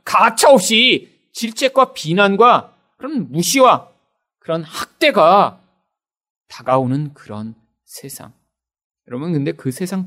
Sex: male